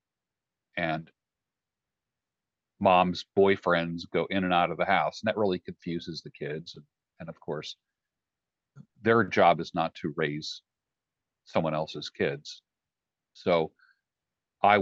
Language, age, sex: English, 40-59, male